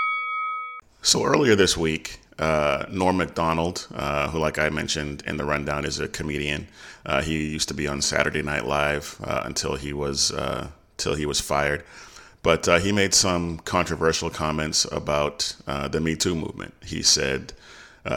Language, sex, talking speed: English, male, 170 wpm